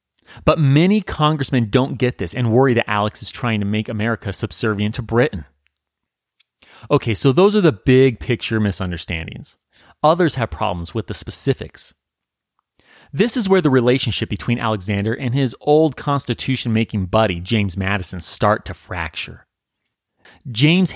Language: English